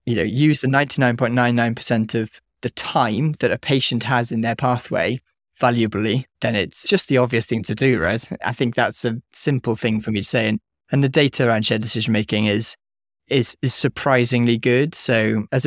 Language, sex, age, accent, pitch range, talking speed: English, male, 20-39, British, 110-125 Hz, 210 wpm